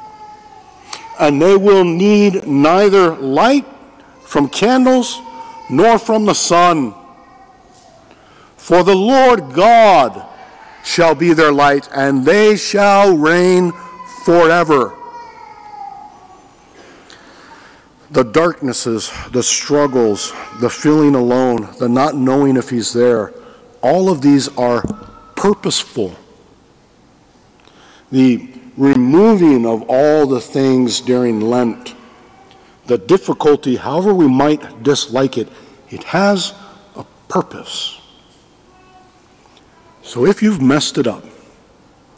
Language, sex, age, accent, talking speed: English, male, 50-69, American, 95 wpm